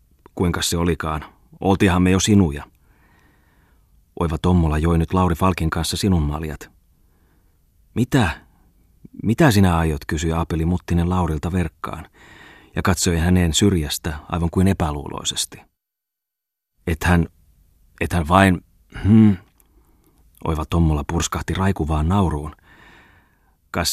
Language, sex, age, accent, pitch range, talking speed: Finnish, male, 30-49, native, 80-95 Hz, 110 wpm